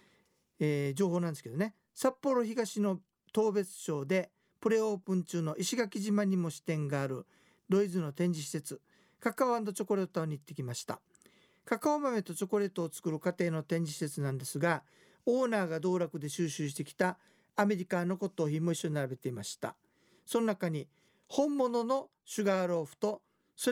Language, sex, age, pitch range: Japanese, male, 50-69, 155-200 Hz